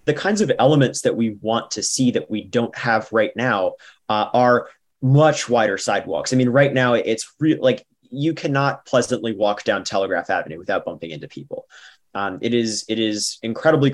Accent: American